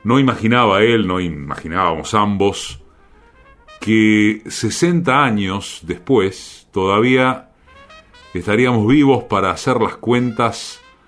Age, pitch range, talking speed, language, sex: 40-59, 85-120 Hz, 90 wpm, Spanish, male